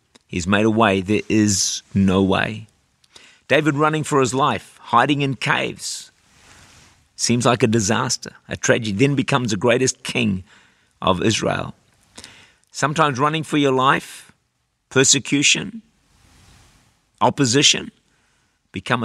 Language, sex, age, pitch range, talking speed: English, male, 50-69, 105-135 Hz, 115 wpm